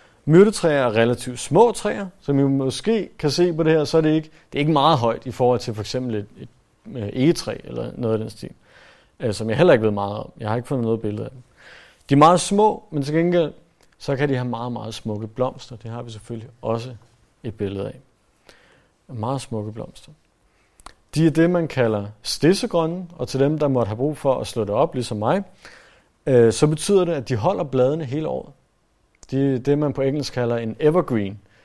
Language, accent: Danish, native